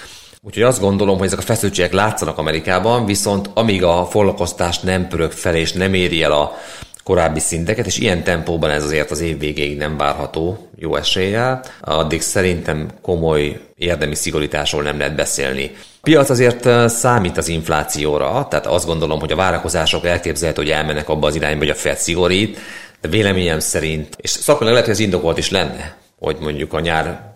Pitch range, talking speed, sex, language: 75-95 Hz, 175 wpm, male, Hungarian